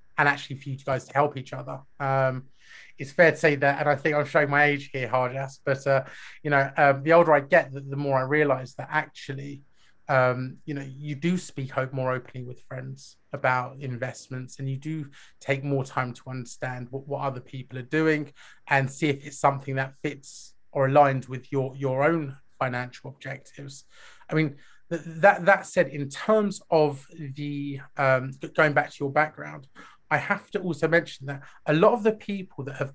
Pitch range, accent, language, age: 135-165 Hz, British, English, 30-49